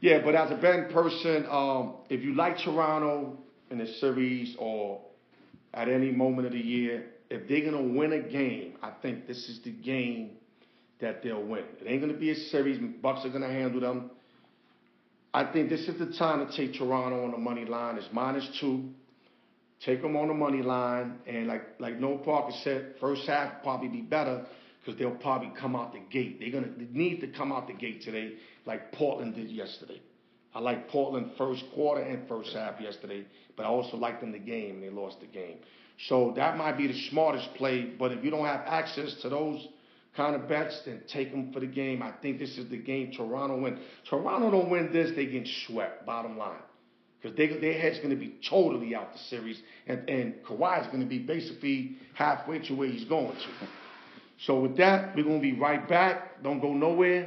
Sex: male